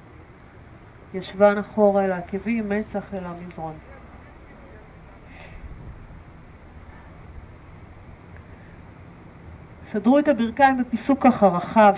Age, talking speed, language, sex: 40-59, 60 wpm, Hebrew, female